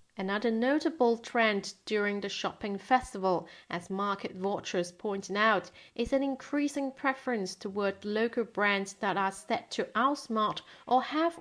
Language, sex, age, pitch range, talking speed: English, female, 30-49, 190-235 Hz, 135 wpm